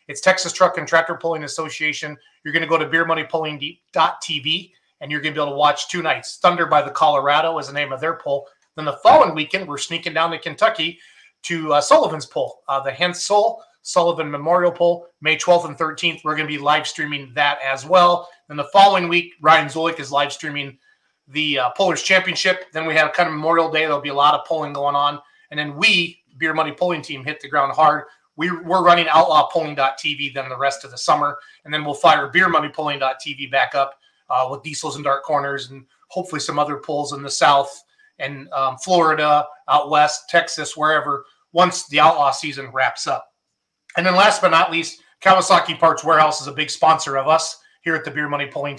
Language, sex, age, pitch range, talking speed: English, male, 30-49, 145-170 Hz, 205 wpm